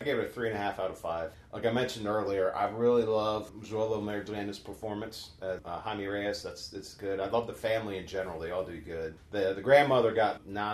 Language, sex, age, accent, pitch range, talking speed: English, male, 40-59, American, 95-125 Hz, 240 wpm